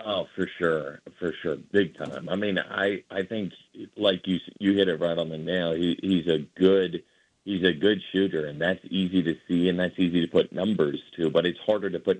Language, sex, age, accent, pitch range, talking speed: English, male, 40-59, American, 85-100 Hz, 225 wpm